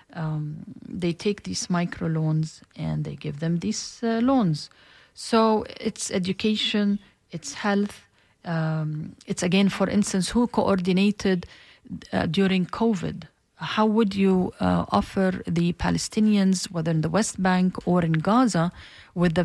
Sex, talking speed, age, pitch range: female, 135 wpm, 40-59, 165-205 Hz